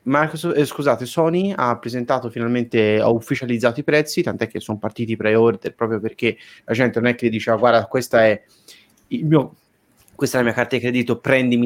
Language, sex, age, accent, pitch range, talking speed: Italian, male, 30-49, native, 110-130 Hz, 195 wpm